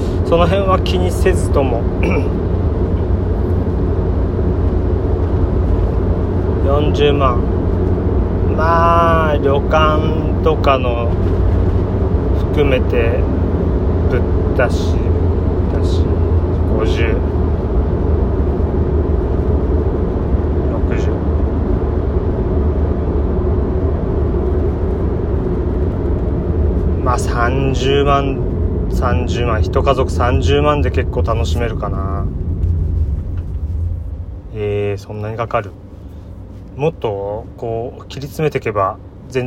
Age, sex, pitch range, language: 30-49, male, 85-95 Hz, Japanese